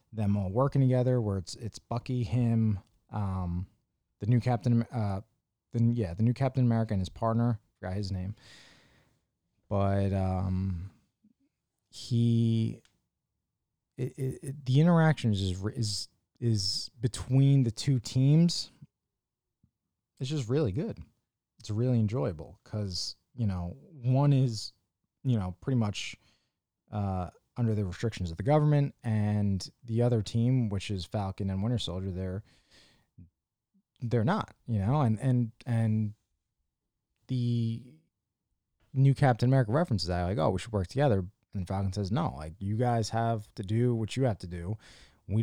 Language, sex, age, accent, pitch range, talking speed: English, male, 20-39, American, 95-125 Hz, 145 wpm